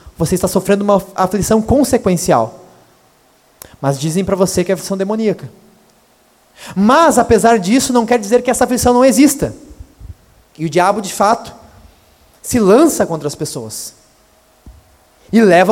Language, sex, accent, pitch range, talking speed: Portuguese, male, Brazilian, 165-245 Hz, 140 wpm